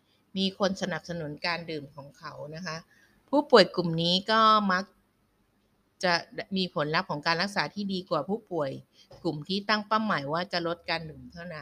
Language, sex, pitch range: Thai, female, 155-205 Hz